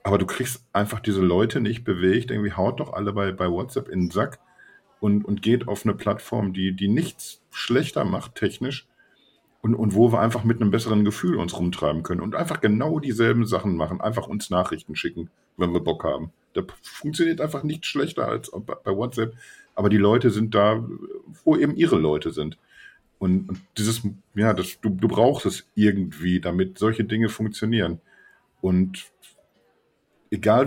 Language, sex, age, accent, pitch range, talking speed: German, male, 50-69, German, 95-120 Hz, 180 wpm